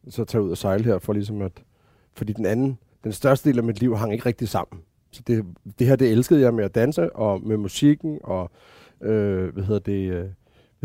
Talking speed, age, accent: 230 wpm, 30-49, native